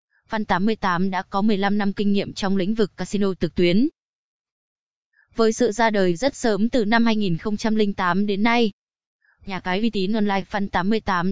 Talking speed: 170 wpm